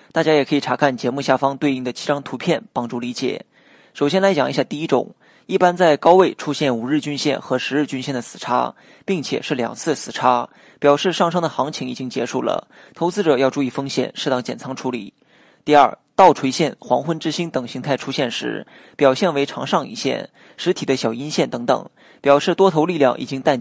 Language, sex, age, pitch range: Chinese, male, 20-39, 130-165 Hz